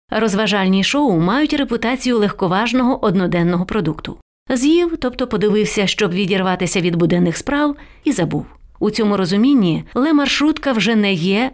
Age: 30-49